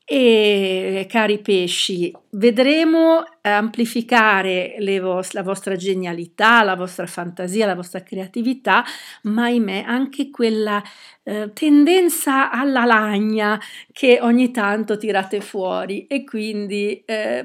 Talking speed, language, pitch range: 110 wpm, Italian, 190-235 Hz